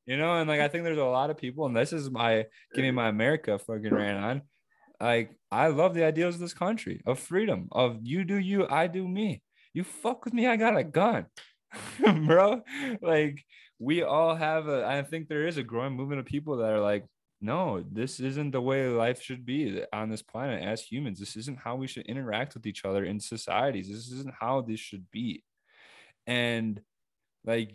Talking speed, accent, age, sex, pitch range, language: 210 wpm, American, 20-39, male, 115-155 Hz, English